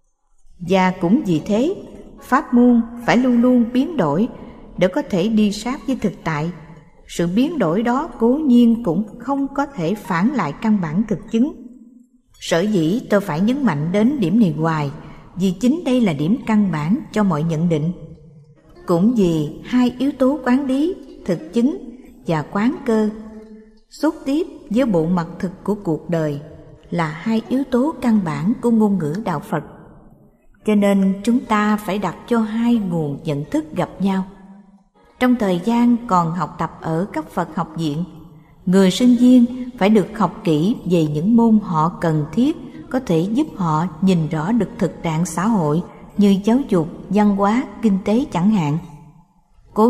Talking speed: 175 wpm